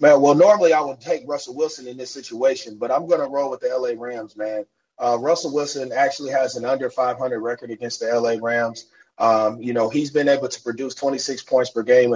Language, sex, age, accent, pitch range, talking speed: English, male, 30-49, American, 115-135 Hz, 225 wpm